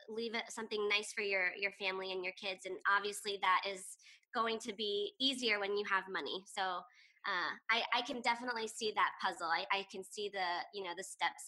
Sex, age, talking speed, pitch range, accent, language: male, 20-39, 215 wpm, 195-245 Hz, American, English